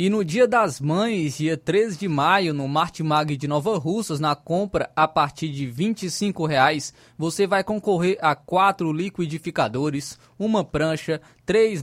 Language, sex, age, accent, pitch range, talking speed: Portuguese, male, 20-39, Brazilian, 150-190 Hz, 150 wpm